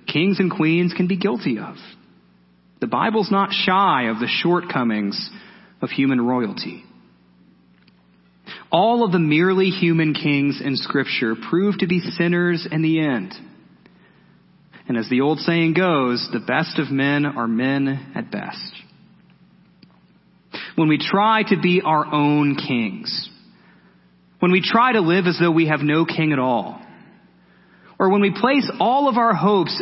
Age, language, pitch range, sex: 30-49, English, 110-185 Hz, male